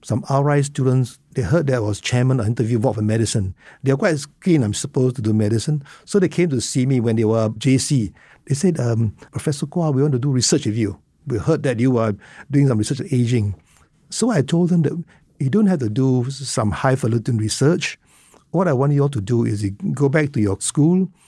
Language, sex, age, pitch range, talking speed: English, male, 60-79, 115-150 Hz, 230 wpm